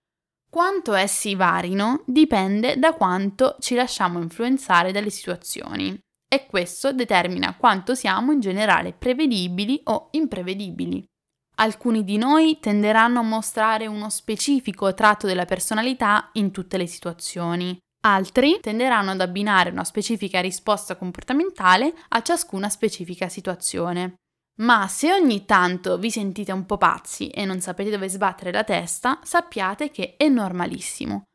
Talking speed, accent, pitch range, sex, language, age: 130 wpm, native, 190-255 Hz, female, Italian, 10-29